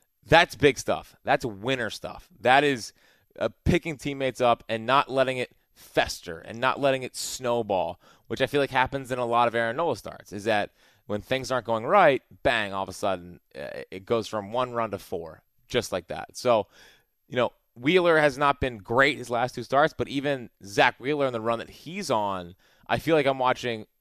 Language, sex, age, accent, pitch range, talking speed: English, male, 20-39, American, 110-145 Hz, 205 wpm